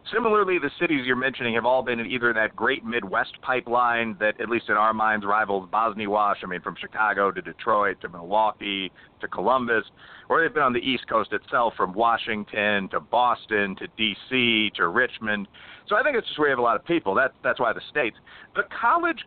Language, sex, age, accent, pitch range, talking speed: English, male, 40-59, American, 110-150 Hz, 205 wpm